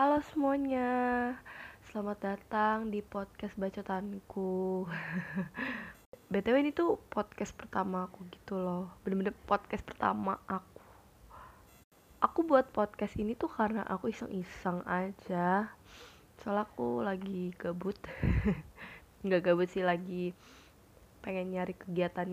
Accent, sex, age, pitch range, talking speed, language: native, female, 20-39, 180-210 Hz, 105 wpm, Indonesian